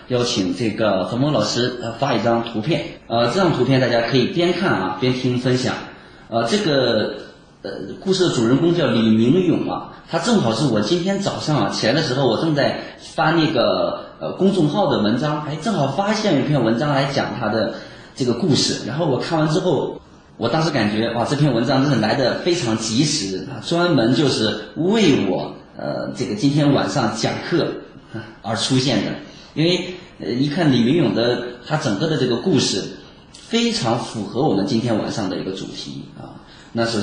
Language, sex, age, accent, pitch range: Chinese, male, 30-49, native, 115-155 Hz